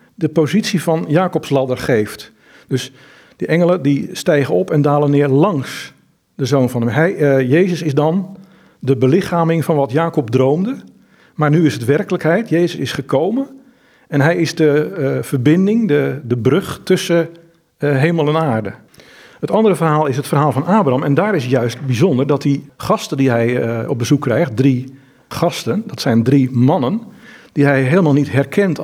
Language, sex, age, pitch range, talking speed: Dutch, male, 50-69, 125-170 Hz, 180 wpm